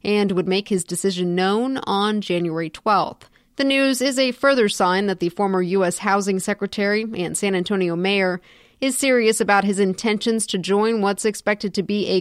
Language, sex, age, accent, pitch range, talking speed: English, female, 30-49, American, 185-220 Hz, 180 wpm